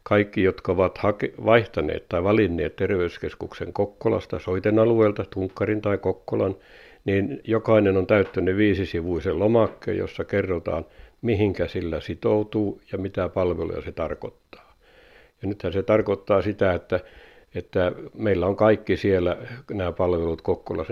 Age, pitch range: 60-79, 95-105 Hz